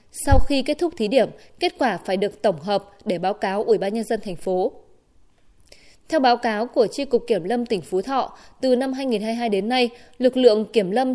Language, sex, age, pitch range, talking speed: Vietnamese, female, 20-39, 200-255 Hz, 220 wpm